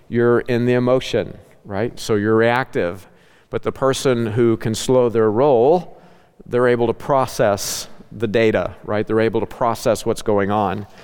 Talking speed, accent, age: 165 wpm, American, 50-69